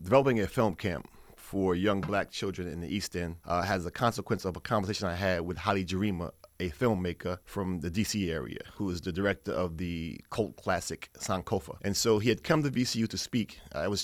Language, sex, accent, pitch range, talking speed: English, male, American, 95-115 Hz, 215 wpm